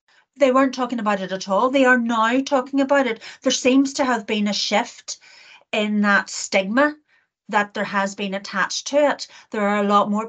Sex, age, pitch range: female, 40-59, 195-245 Hz